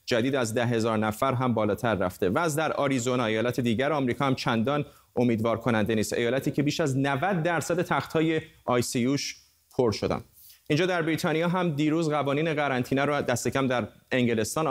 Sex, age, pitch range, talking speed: male, 30-49, 125-155 Hz, 165 wpm